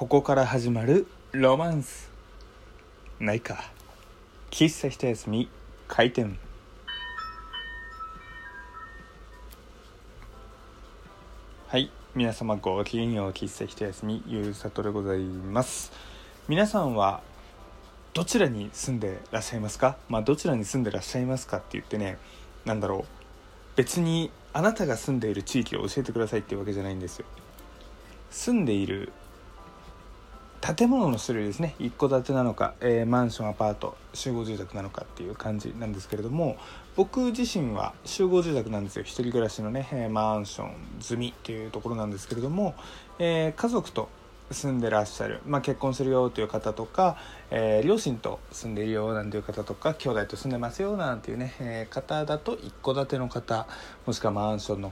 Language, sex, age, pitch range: Japanese, male, 20-39, 105-135 Hz